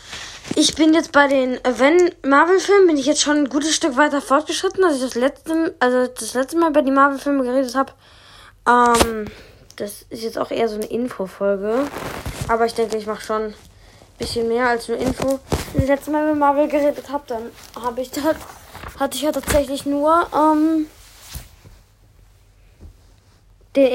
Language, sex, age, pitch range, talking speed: German, female, 20-39, 220-295 Hz, 175 wpm